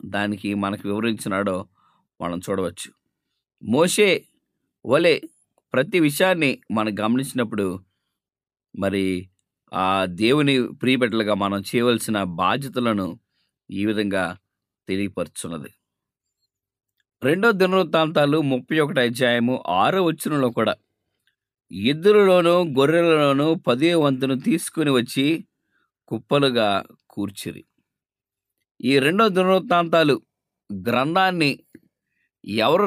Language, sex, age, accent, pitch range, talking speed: English, male, 20-39, Indian, 105-160 Hz, 70 wpm